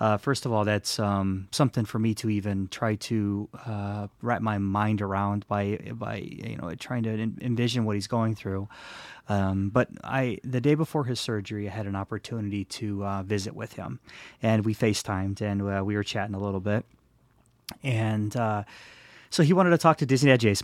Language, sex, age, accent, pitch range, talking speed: English, male, 30-49, American, 100-120 Hz, 200 wpm